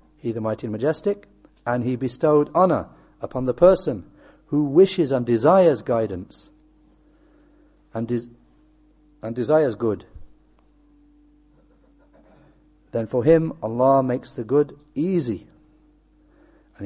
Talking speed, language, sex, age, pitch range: 105 wpm, English, male, 60-79, 120-165 Hz